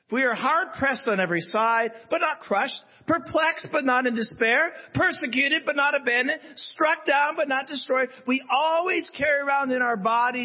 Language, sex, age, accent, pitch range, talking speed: English, male, 50-69, American, 165-245 Hz, 180 wpm